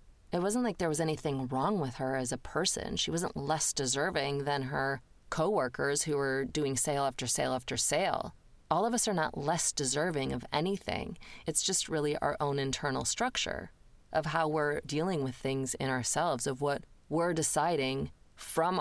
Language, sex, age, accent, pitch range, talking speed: English, female, 30-49, American, 140-175 Hz, 180 wpm